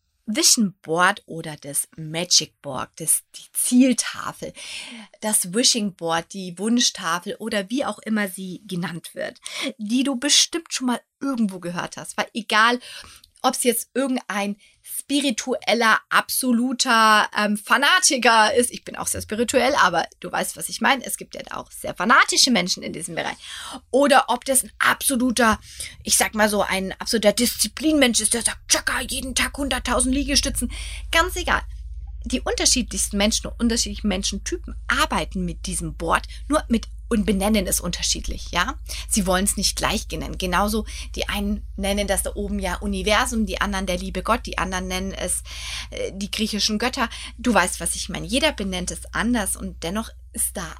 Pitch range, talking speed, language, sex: 185-245 Hz, 165 wpm, German, female